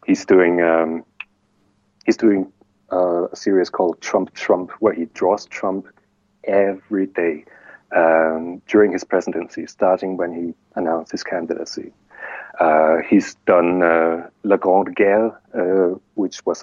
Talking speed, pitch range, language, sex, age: 135 wpm, 85-100 Hz, English, male, 40-59